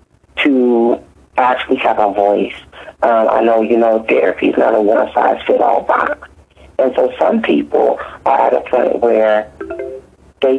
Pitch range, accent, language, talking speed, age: 105-115 Hz, American, English, 165 wpm, 40-59